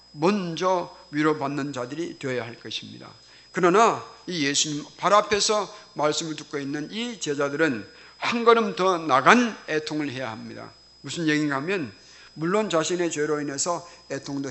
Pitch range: 145-195 Hz